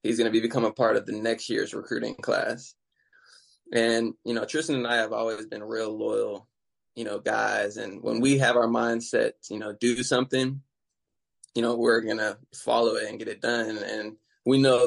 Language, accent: English, American